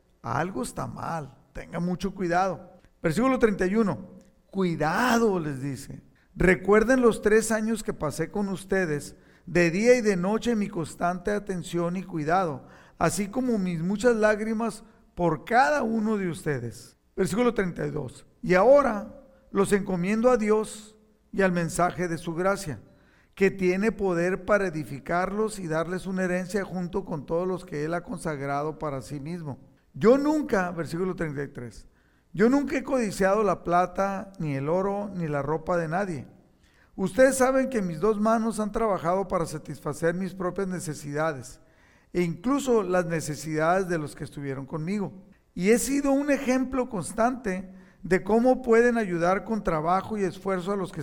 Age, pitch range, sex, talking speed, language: 50-69, 170-215 Hz, male, 155 wpm, Spanish